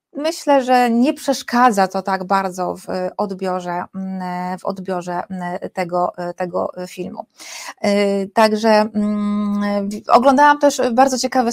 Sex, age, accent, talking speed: female, 30-49, native, 100 wpm